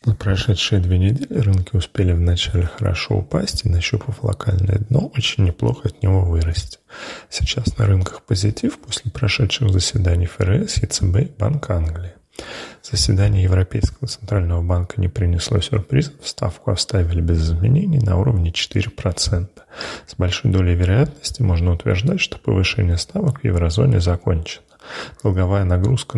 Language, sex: Russian, male